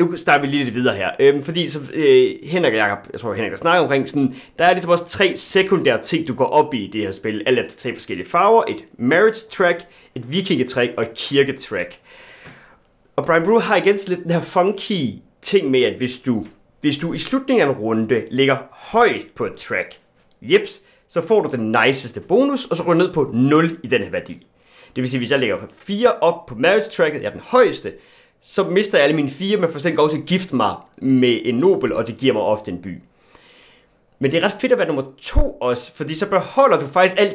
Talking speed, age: 235 wpm, 30-49